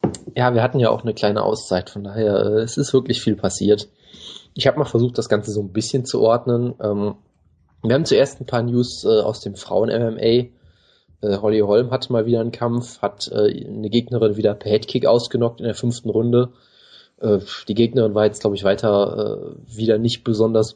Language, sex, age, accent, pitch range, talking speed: German, male, 20-39, German, 105-120 Hz, 200 wpm